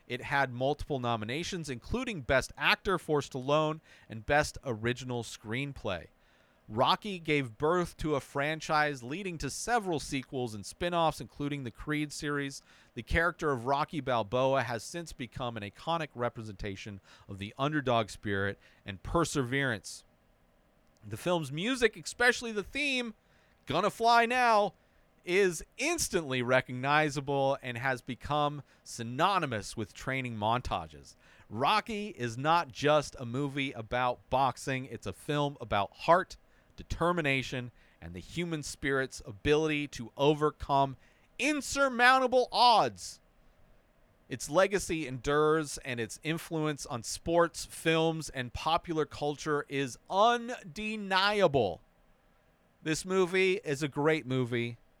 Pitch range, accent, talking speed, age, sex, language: 120-170 Hz, American, 120 wpm, 40-59, male, English